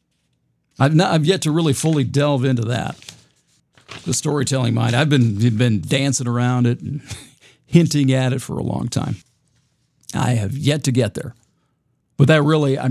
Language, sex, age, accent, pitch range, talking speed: English, male, 50-69, American, 120-150 Hz, 165 wpm